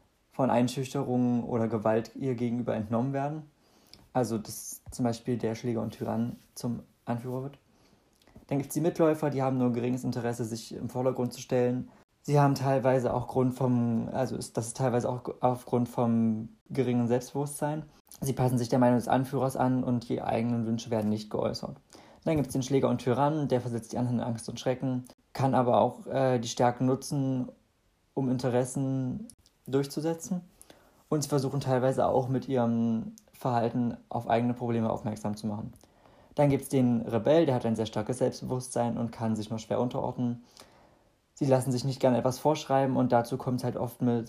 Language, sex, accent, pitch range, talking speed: German, male, German, 115-130 Hz, 185 wpm